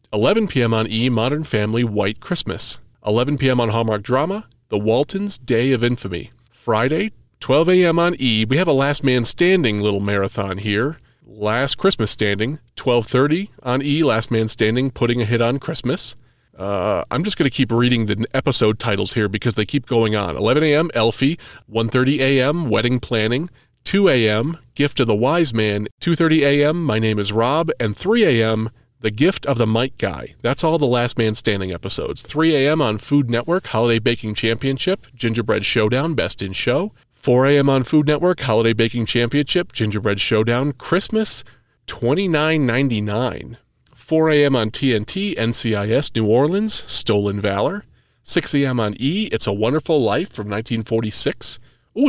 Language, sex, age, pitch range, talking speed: English, male, 30-49, 110-150 Hz, 165 wpm